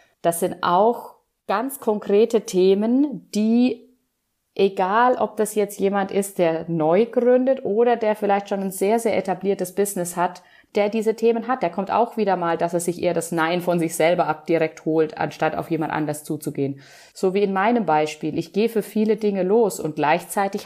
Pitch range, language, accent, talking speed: 170-220 Hz, German, German, 190 wpm